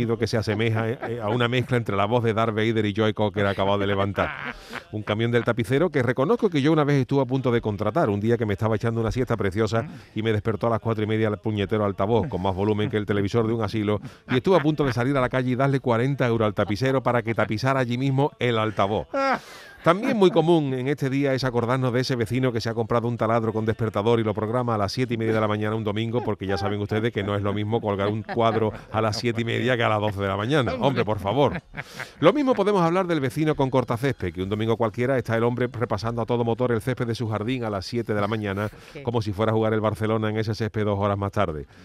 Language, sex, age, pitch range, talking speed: Spanish, male, 40-59, 110-130 Hz, 270 wpm